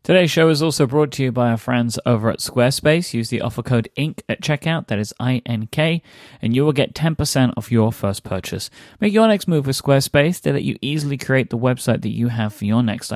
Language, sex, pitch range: English, male, 105-135 Hz